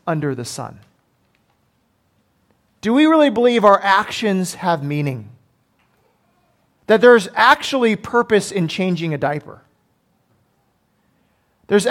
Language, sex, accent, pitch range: English, male, American, 160-230 Hz